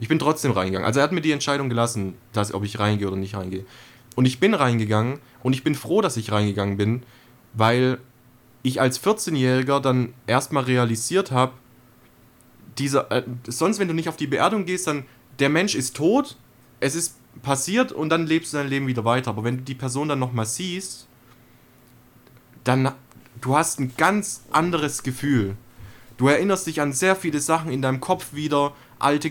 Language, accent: German, German